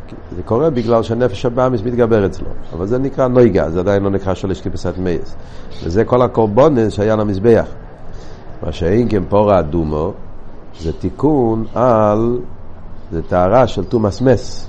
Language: Hebrew